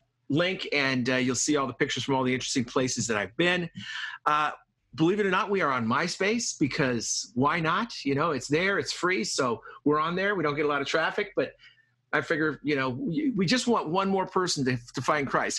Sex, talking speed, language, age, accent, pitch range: male, 230 wpm, English, 40-59, American, 130-170 Hz